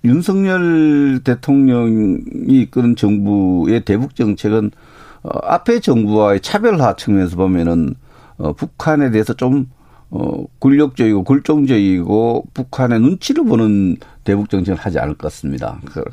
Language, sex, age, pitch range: Korean, male, 50-69, 105-135 Hz